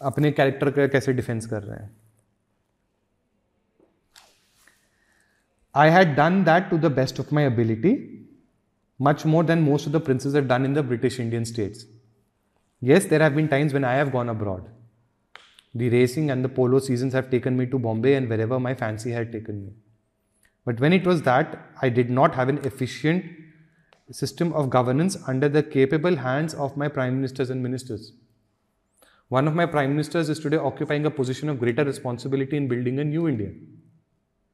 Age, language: 30-49, Hindi